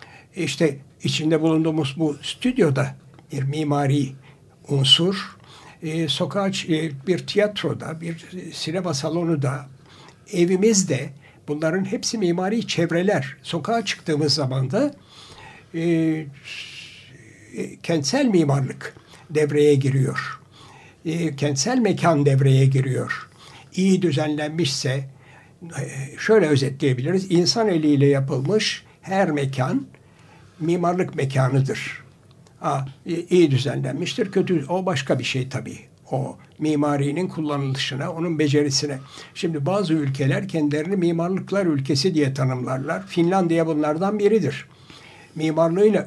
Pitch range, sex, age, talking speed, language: 140-175 Hz, male, 60-79, 95 wpm, Turkish